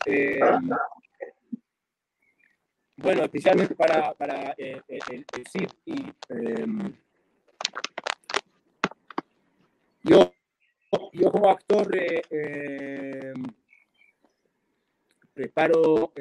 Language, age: Spanish, 30-49